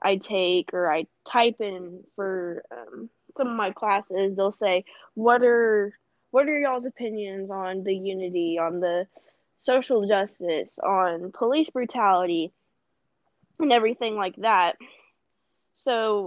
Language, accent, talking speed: English, American, 130 wpm